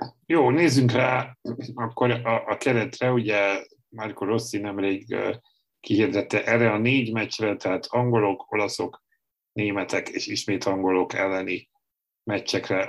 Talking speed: 120 wpm